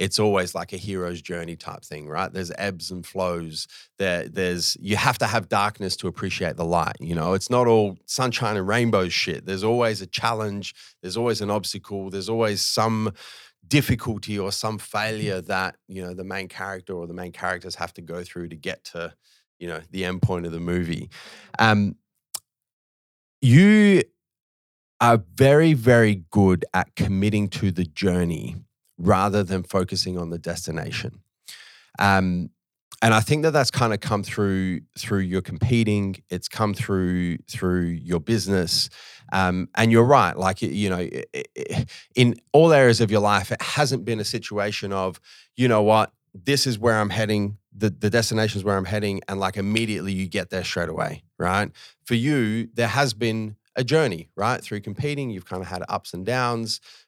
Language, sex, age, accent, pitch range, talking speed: English, male, 30-49, Australian, 90-115 Hz, 180 wpm